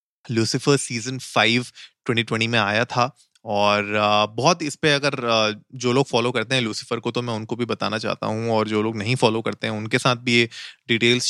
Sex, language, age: male, Hindi, 30-49